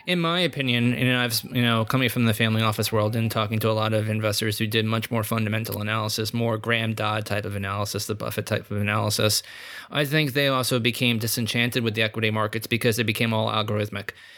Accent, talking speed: American, 215 wpm